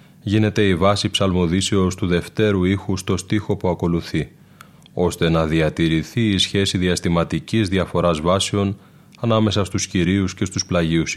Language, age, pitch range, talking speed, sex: Greek, 30-49, 90-110 Hz, 135 wpm, male